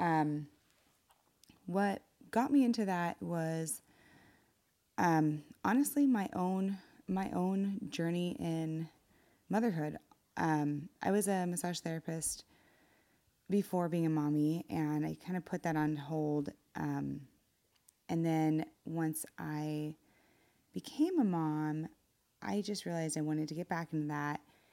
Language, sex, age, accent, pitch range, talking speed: English, female, 20-39, American, 155-180 Hz, 125 wpm